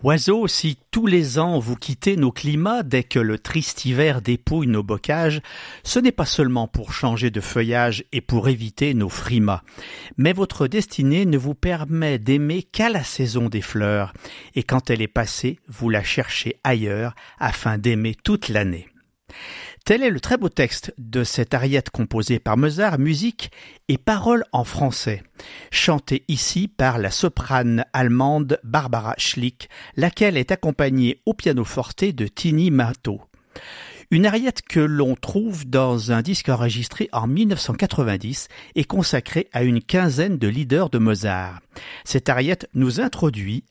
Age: 50-69